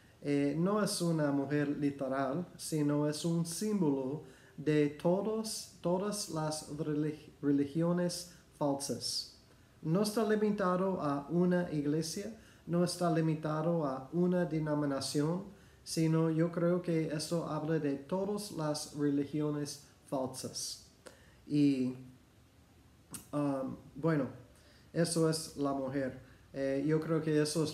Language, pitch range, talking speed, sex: Spanish, 140-170 Hz, 110 wpm, male